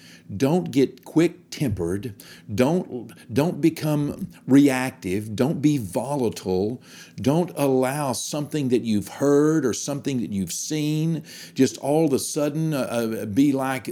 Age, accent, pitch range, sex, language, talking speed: 50-69, American, 100-160 Hz, male, English, 125 wpm